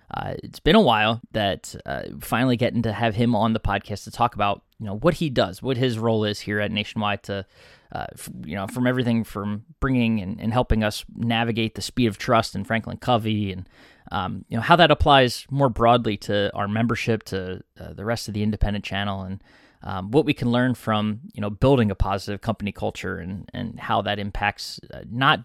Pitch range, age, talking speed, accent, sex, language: 100-120 Hz, 20-39, 215 wpm, American, male, English